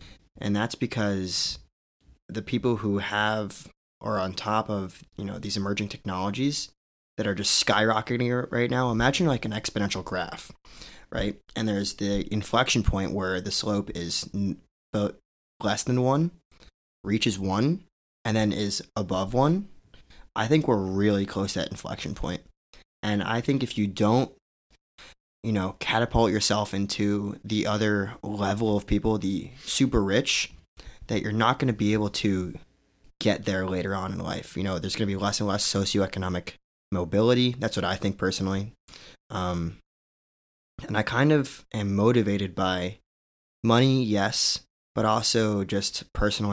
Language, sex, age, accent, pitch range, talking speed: English, male, 20-39, American, 95-115 Hz, 155 wpm